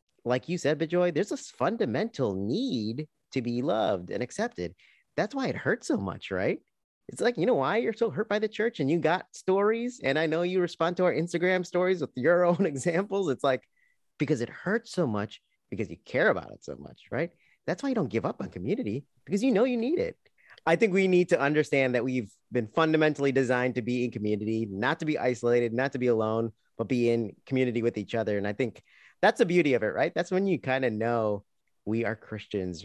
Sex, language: male, English